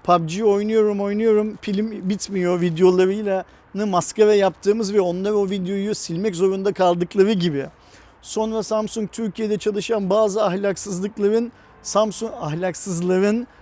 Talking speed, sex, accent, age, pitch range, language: 115 wpm, male, native, 40-59, 175-225 Hz, Turkish